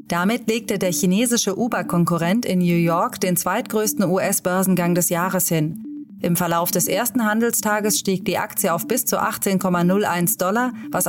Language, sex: German, female